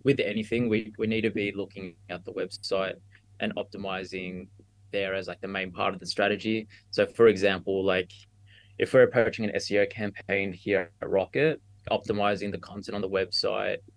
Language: English